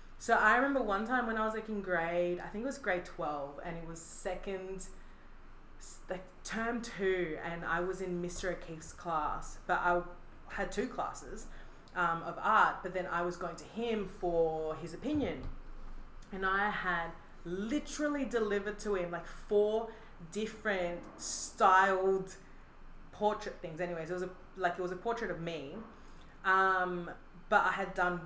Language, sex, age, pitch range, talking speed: English, female, 20-39, 165-195 Hz, 165 wpm